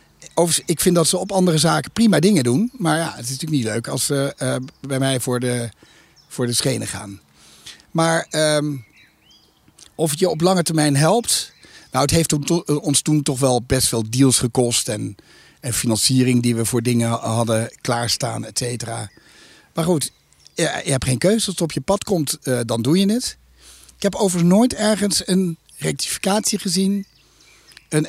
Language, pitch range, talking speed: Dutch, 120-170 Hz, 185 wpm